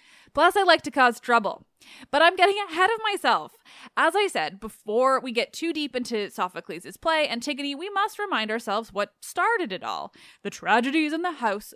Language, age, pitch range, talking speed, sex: English, 20-39, 205-300 Hz, 190 wpm, female